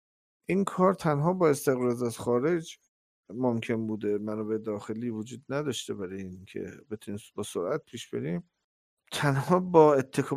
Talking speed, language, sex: 140 wpm, Persian, male